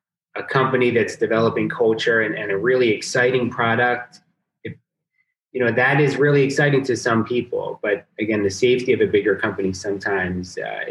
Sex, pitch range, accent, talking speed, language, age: male, 105-135 Hz, American, 155 wpm, English, 30-49